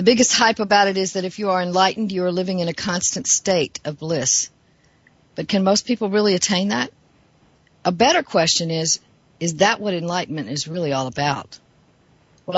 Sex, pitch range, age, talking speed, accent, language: female, 155-195 Hz, 50-69, 190 wpm, American, English